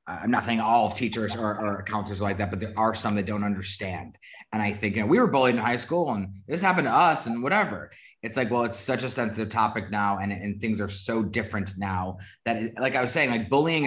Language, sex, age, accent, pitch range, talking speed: English, male, 20-39, American, 110-125 Hz, 265 wpm